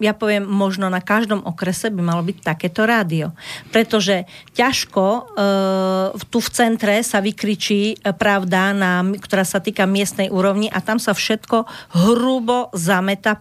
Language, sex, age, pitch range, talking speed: English, female, 40-59, 190-220 Hz, 150 wpm